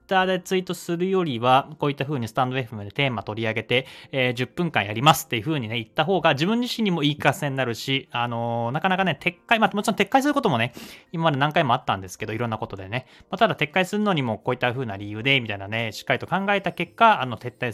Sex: male